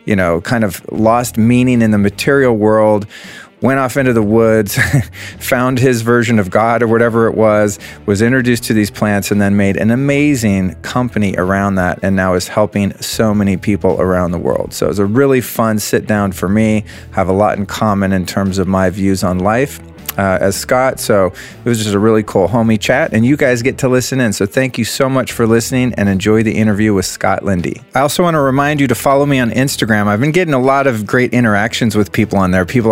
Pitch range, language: 100-120 Hz, English